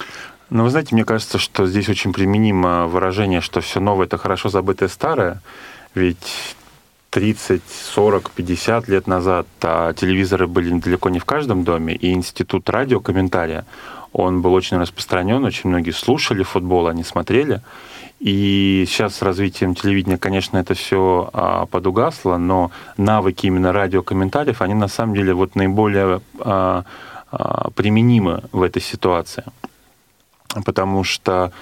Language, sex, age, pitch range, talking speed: Russian, male, 20-39, 90-105 Hz, 140 wpm